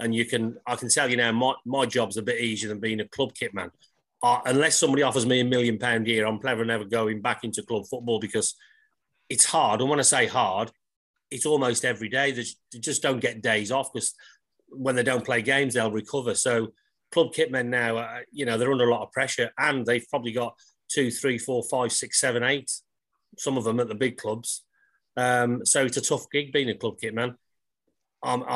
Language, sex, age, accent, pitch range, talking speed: English, male, 30-49, British, 110-130 Hz, 225 wpm